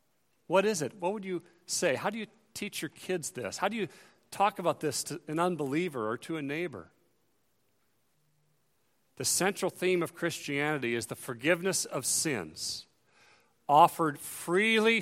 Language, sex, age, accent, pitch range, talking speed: English, male, 40-59, American, 145-180 Hz, 155 wpm